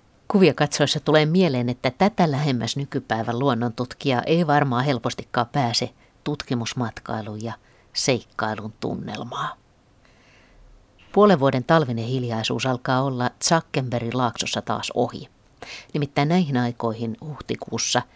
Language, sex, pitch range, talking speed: Finnish, female, 120-145 Hz, 100 wpm